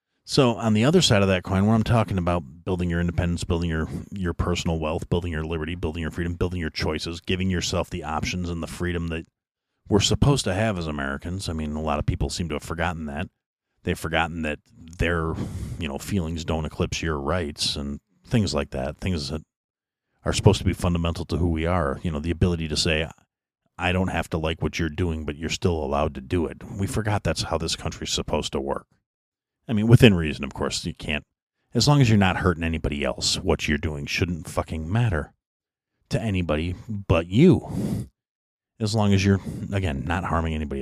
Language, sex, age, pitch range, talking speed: English, male, 40-59, 80-105 Hz, 210 wpm